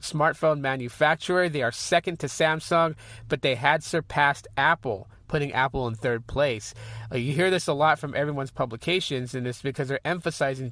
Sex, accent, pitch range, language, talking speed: male, American, 130-170 Hz, English, 175 wpm